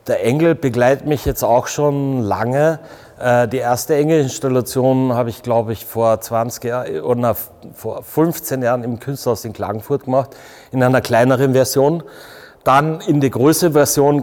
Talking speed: 150 wpm